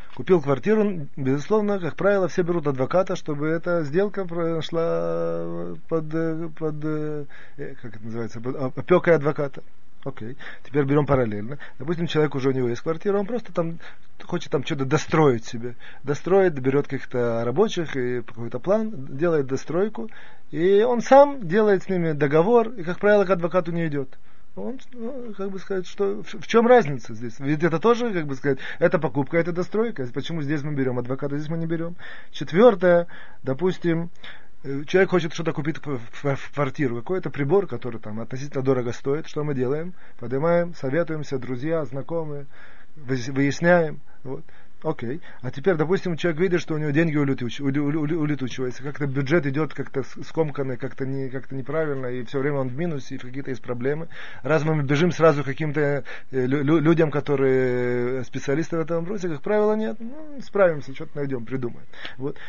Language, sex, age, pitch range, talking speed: Russian, male, 30-49, 135-175 Hz, 170 wpm